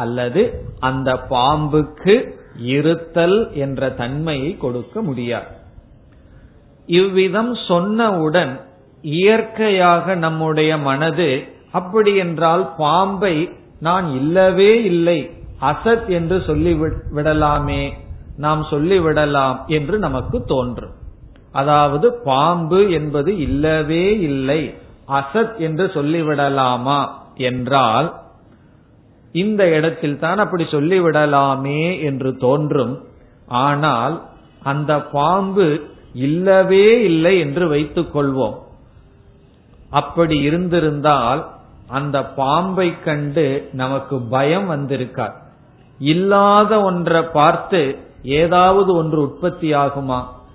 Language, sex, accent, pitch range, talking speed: Tamil, male, native, 135-175 Hz, 80 wpm